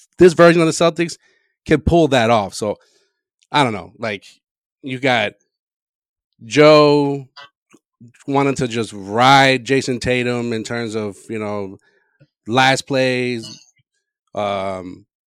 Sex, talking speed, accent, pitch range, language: male, 120 wpm, American, 120-150 Hz, English